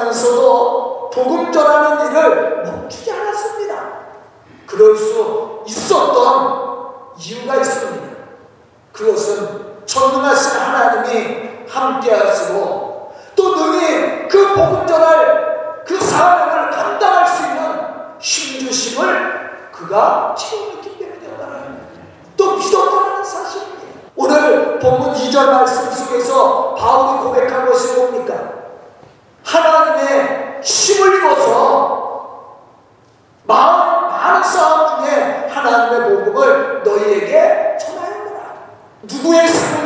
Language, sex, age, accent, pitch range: Korean, male, 40-59, native, 280-405 Hz